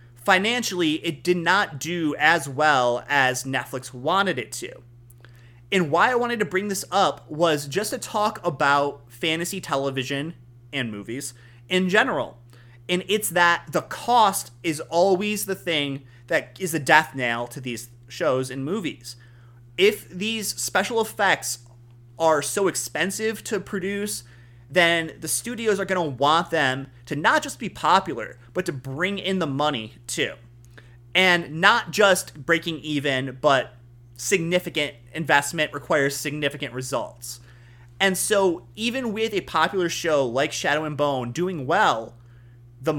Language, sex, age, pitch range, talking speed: English, male, 30-49, 125-185 Hz, 145 wpm